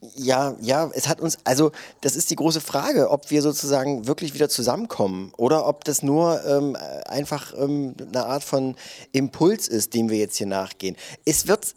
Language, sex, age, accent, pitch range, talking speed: German, male, 30-49, German, 130-160 Hz, 185 wpm